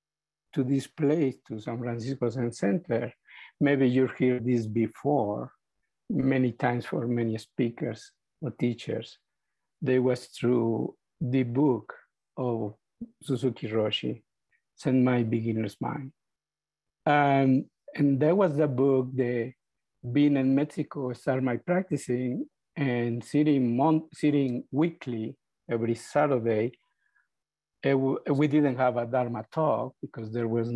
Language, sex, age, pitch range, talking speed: English, male, 50-69, 115-145 Hz, 120 wpm